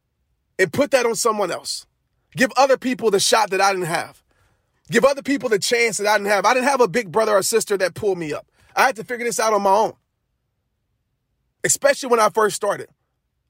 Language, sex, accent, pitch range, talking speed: English, male, American, 210-270 Hz, 220 wpm